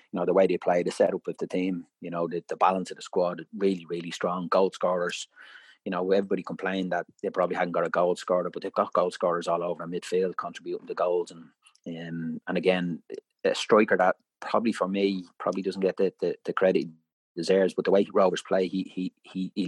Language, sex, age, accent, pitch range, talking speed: English, male, 30-49, Irish, 90-105 Hz, 230 wpm